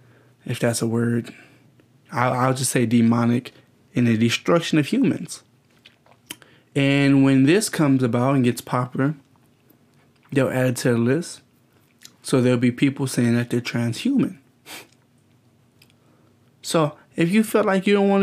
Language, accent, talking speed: English, American, 140 wpm